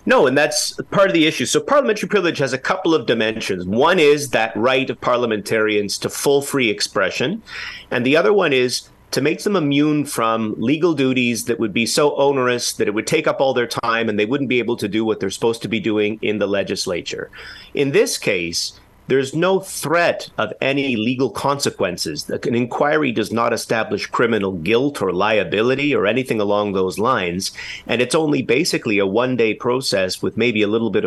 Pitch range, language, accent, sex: 105-140 Hz, English, American, male